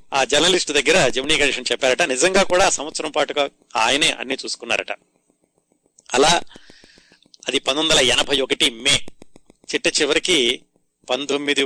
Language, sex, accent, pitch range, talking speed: Telugu, male, native, 125-155 Hz, 115 wpm